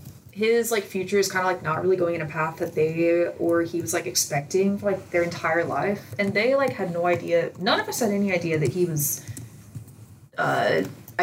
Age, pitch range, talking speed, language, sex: 20-39, 140-195 Hz, 220 wpm, English, female